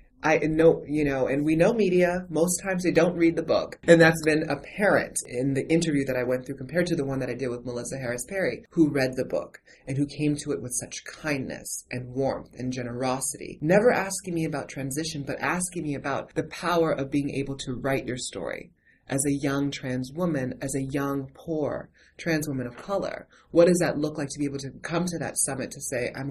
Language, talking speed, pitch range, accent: English, 230 wpm, 130-160 Hz, American